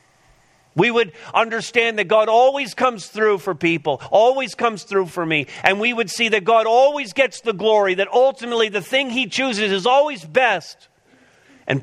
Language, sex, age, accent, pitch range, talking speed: English, male, 50-69, American, 120-195 Hz, 180 wpm